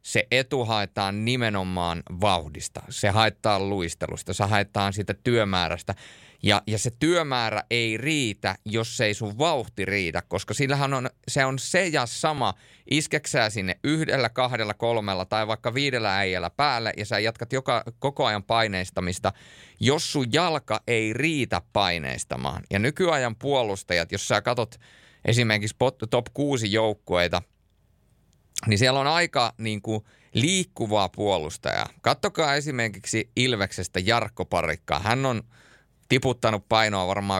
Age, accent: 30-49, native